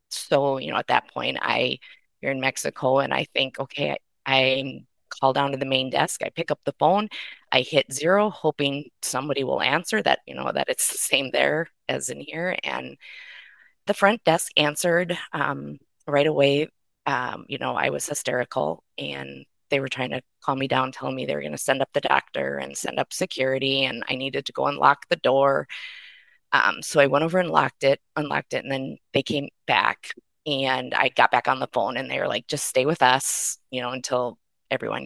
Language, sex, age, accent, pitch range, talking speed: English, female, 20-39, American, 130-150 Hz, 210 wpm